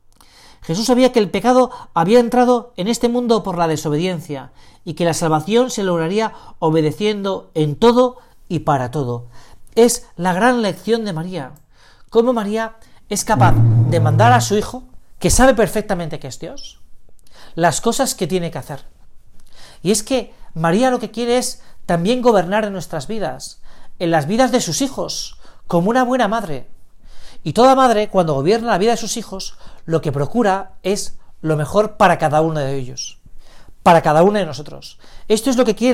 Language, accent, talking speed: Spanish, Spanish, 175 wpm